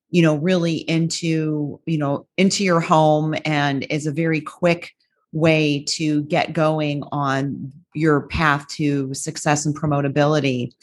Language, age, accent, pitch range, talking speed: English, 40-59, American, 150-175 Hz, 140 wpm